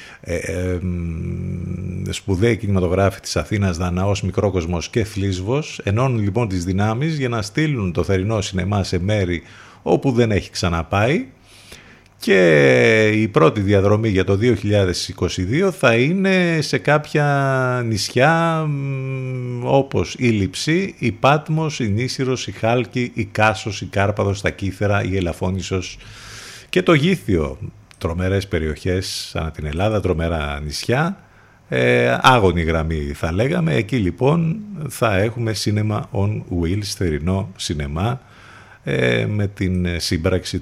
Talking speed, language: 125 wpm, Greek